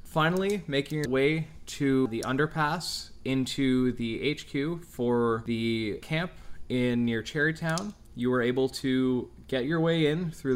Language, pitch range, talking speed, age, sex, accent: English, 120-140 Hz, 140 wpm, 20-39, male, American